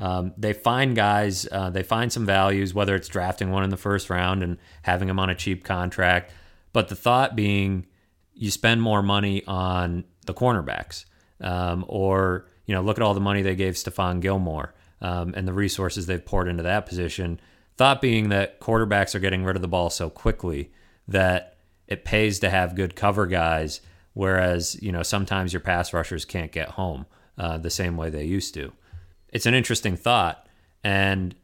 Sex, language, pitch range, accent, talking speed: male, English, 85-105 Hz, American, 190 wpm